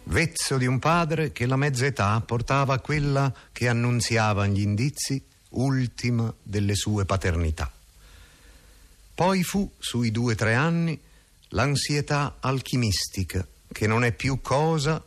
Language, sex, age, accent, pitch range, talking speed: Italian, male, 50-69, native, 90-130 Hz, 130 wpm